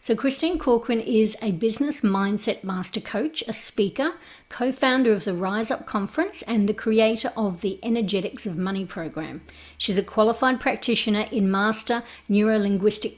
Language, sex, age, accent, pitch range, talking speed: English, female, 50-69, Australian, 195-235 Hz, 150 wpm